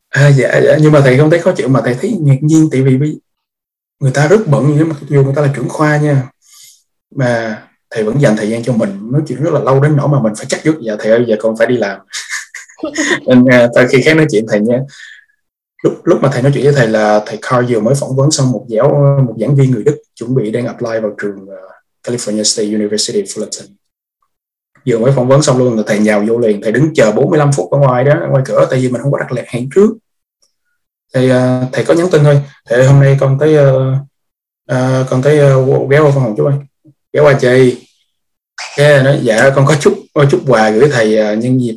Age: 20-39